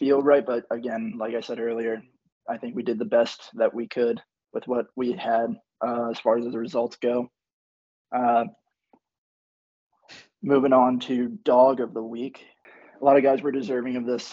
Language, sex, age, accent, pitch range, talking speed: English, male, 20-39, American, 115-125 Hz, 185 wpm